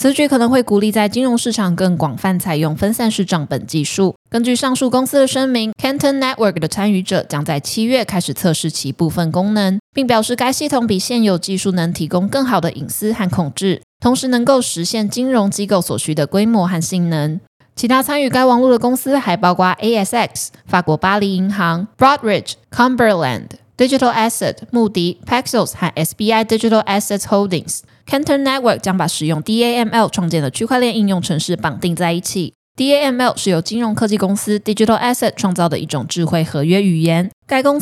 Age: 20-39